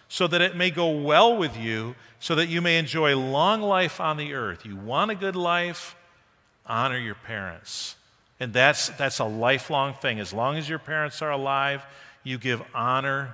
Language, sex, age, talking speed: English, male, 50-69, 190 wpm